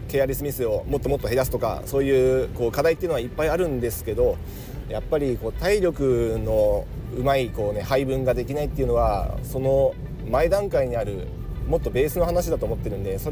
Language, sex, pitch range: Japanese, male, 110-140 Hz